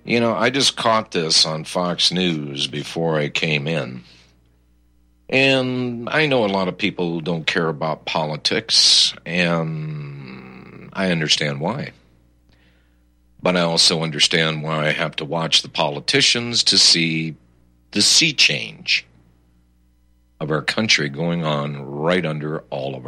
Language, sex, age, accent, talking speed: English, male, 60-79, American, 140 wpm